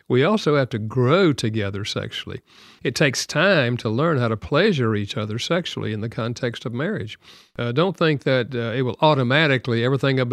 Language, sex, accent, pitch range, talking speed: English, male, American, 115-140 Hz, 190 wpm